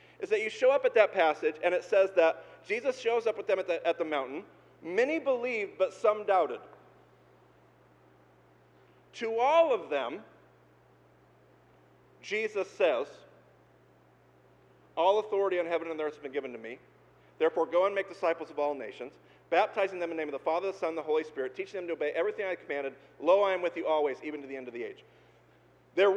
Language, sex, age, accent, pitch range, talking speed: English, male, 40-59, American, 165-265 Hz, 205 wpm